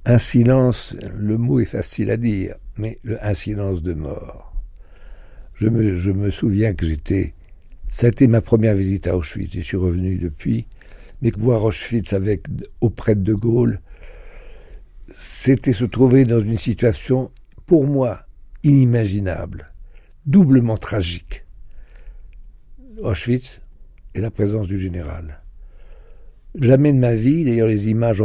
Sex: male